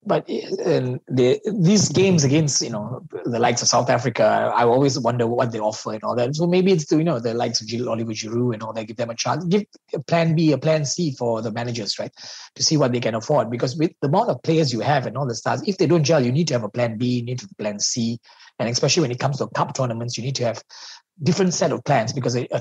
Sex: male